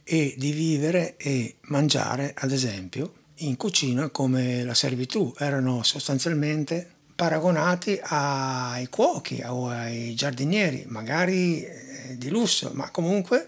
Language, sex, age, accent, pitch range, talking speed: Italian, male, 60-79, native, 135-170 Hz, 110 wpm